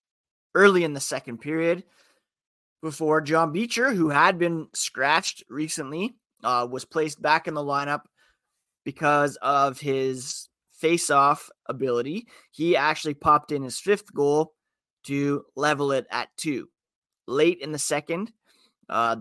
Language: English